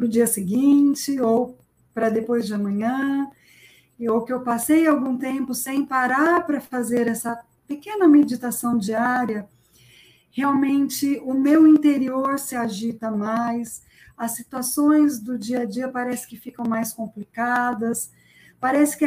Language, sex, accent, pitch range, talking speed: Portuguese, female, Brazilian, 235-290 Hz, 135 wpm